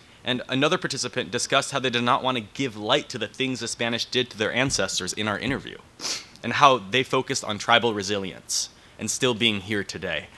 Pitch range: 105-130 Hz